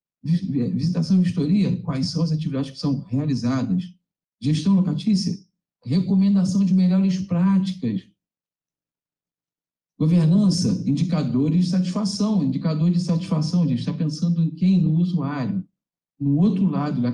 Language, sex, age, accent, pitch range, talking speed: Portuguese, male, 50-69, Brazilian, 140-185 Hz, 125 wpm